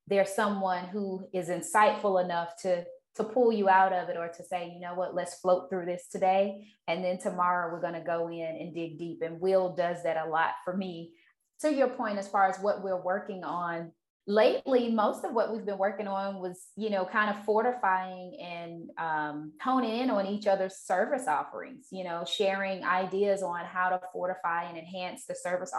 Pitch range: 175-205 Hz